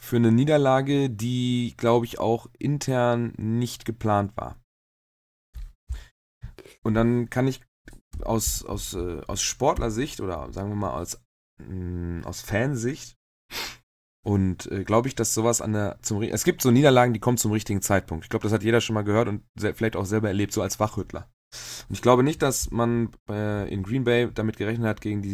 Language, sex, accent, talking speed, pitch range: German, male, German, 175 wpm, 95-120 Hz